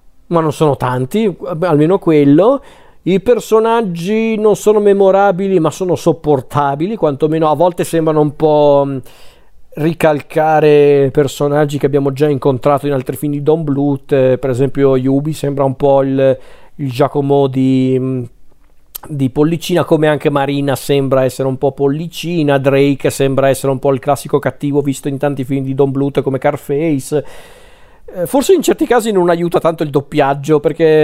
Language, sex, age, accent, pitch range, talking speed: Italian, male, 40-59, native, 140-170 Hz, 155 wpm